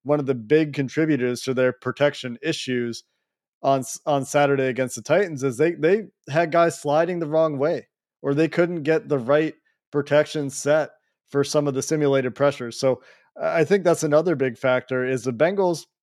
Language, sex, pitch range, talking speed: English, male, 130-150 Hz, 180 wpm